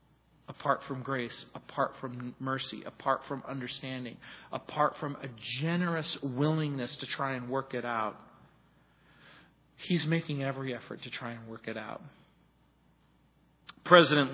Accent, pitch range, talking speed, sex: American, 130-165 Hz, 130 wpm, male